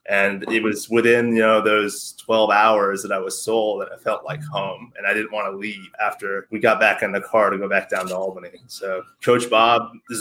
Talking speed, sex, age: 240 wpm, male, 20-39